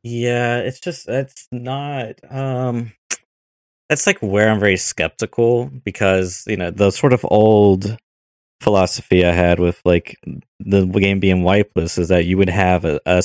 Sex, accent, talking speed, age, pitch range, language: male, American, 160 wpm, 20-39, 85-110 Hz, English